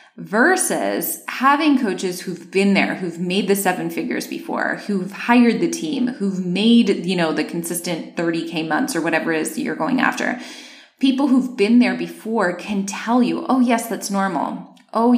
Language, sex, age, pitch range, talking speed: English, female, 20-39, 180-235 Hz, 180 wpm